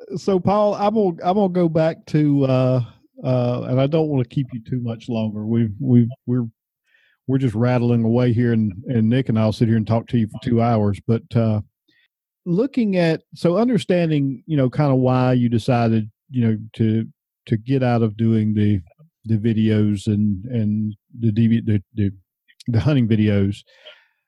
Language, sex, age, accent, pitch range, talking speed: English, male, 50-69, American, 115-145 Hz, 190 wpm